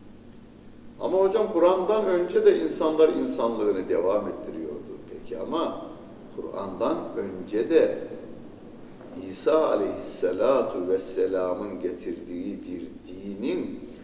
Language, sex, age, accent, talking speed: Turkish, male, 60-79, native, 85 wpm